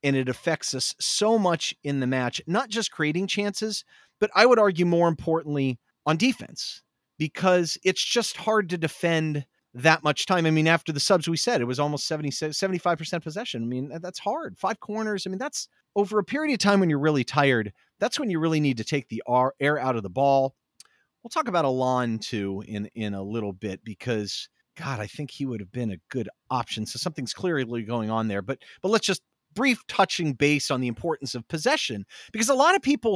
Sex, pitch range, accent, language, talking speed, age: male, 130-190 Hz, American, English, 210 wpm, 40-59